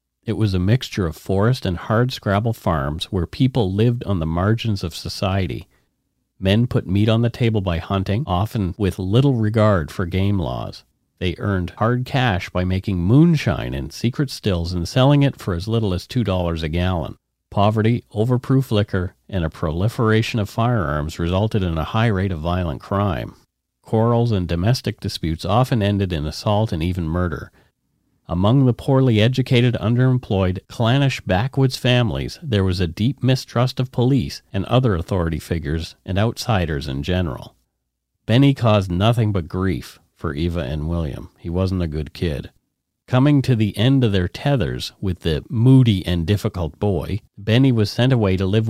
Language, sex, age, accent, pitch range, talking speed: English, male, 40-59, American, 90-120 Hz, 170 wpm